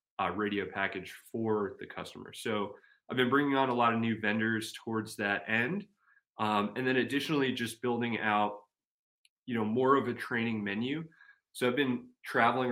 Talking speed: 175 wpm